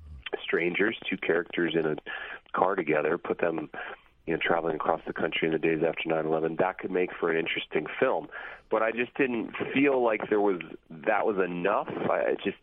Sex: male